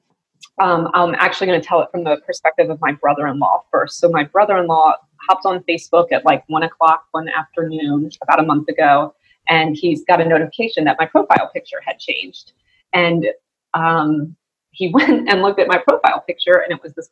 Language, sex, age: English, female, 30-49